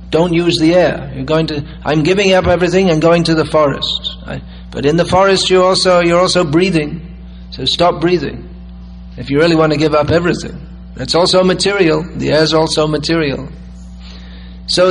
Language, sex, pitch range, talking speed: English, male, 145-175 Hz, 185 wpm